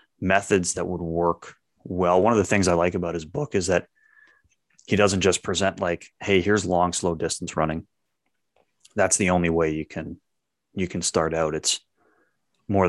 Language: English